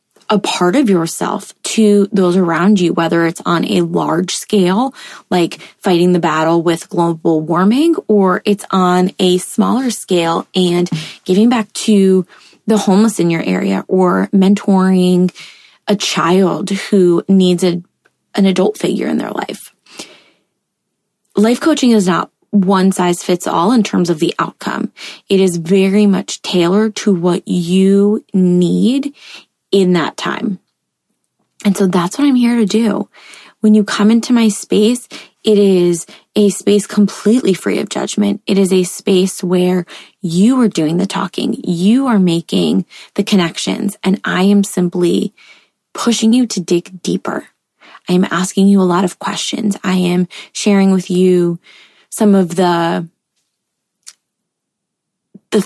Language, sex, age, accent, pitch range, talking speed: English, female, 20-39, American, 180-210 Hz, 145 wpm